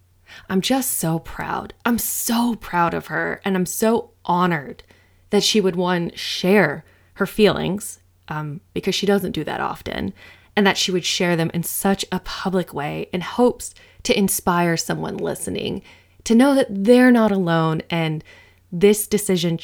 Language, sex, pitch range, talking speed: English, female, 145-205 Hz, 160 wpm